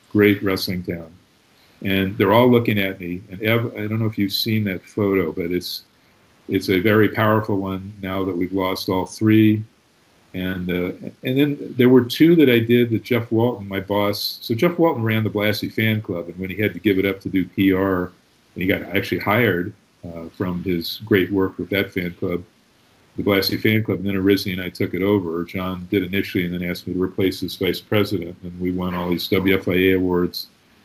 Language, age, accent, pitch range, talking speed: English, 50-69, American, 90-110 Hz, 215 wpm